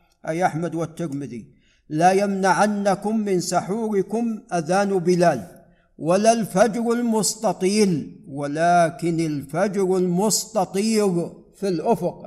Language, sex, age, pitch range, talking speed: Arabic, male, 50-69, 175-210 Hz, 85 wpm